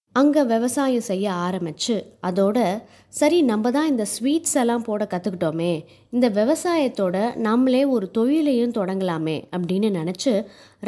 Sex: female